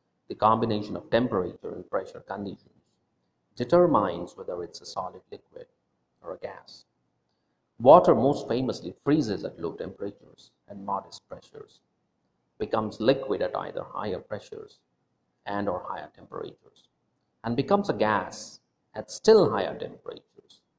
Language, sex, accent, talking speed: English, male, Indian, 125 wpm